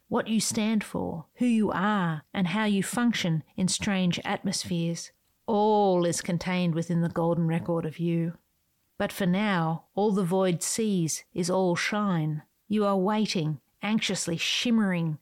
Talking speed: 150 wpm